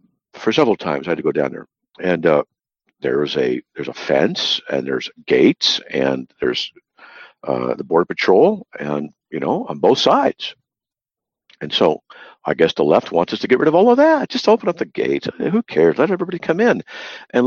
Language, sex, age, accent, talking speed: English, male, 50-69, American, 200 wpm